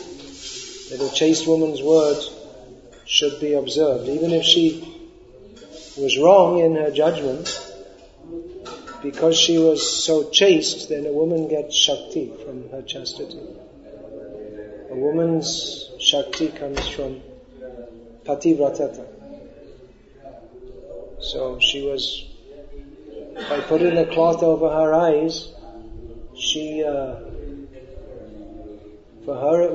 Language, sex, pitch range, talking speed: English, male, 140-170 Hz, 100 wpm